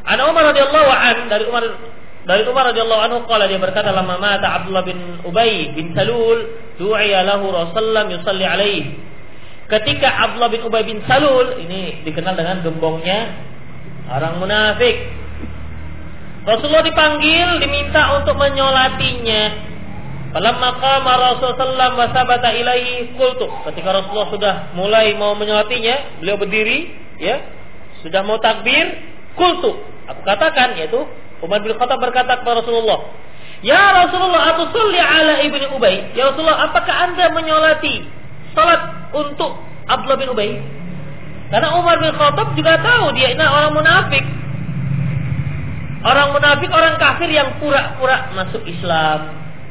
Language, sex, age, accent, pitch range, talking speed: Indonesian, male, 30-49, native, 190-290 Hz, 110 wpm